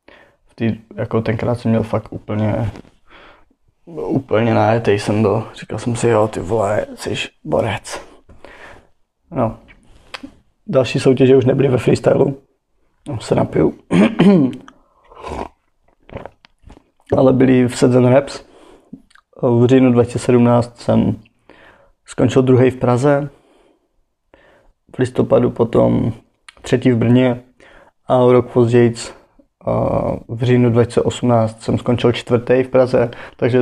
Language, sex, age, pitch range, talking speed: Czech, male, 20-39, 115-125 Hz, 105 wpm